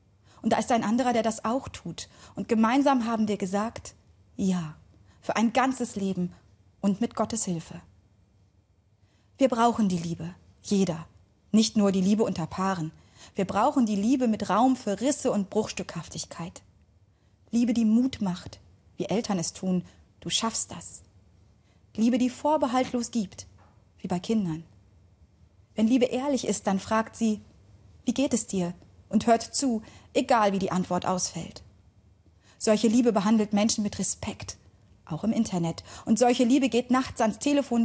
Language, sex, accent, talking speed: German, female, German, 155 wpm